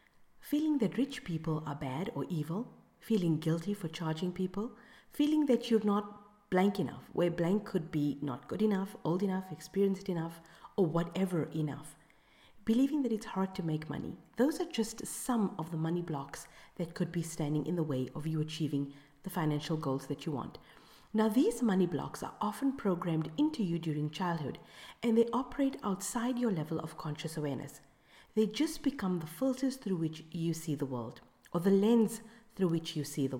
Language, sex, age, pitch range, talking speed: English, female, 40-59, 155-220 Hz, 185 wpm